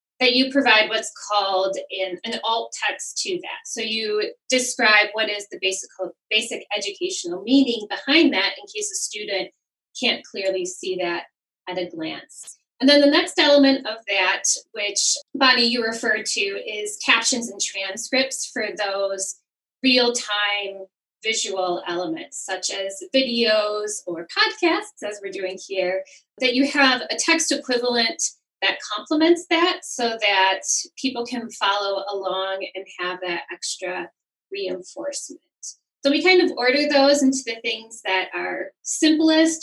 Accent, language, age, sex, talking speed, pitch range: American, English, 10-29, female, 145 wpm, 195-275 Hz